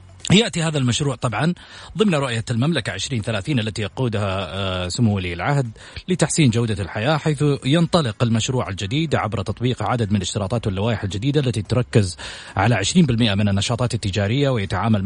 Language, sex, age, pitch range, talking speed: Arabic, male, 30-49, 105-135 Hz, 140 wpm